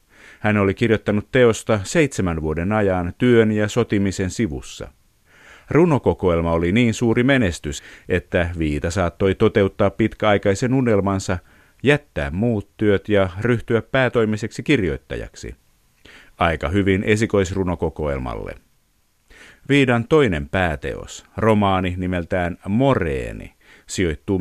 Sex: male